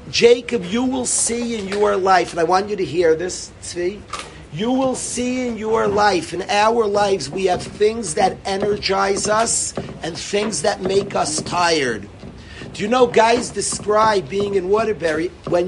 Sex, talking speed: male, 170 wpm